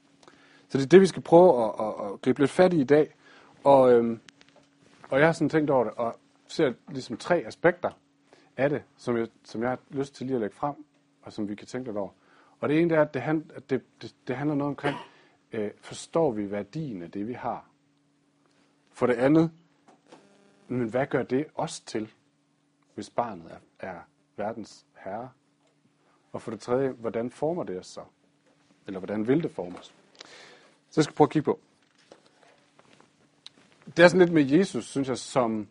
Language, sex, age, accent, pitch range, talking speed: Danish, male, 40-59, native, 115-145 Hz, 195 wpm